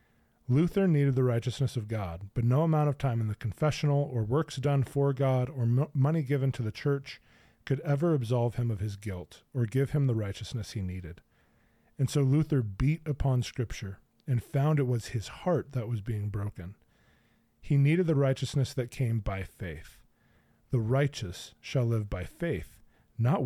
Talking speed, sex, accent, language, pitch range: 180 wpm, male, American, English, 105-140 Hz